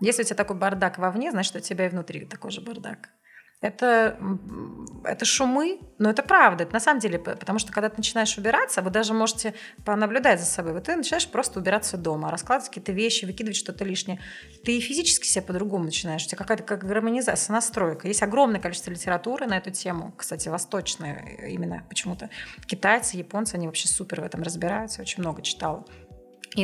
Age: 30-49